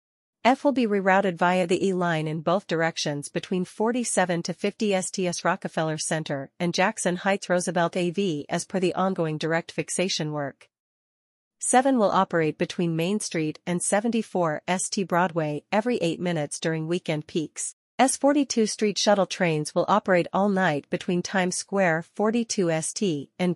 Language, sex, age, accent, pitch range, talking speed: English, female, 40-59, American, 160-195 Hz, 150 wpm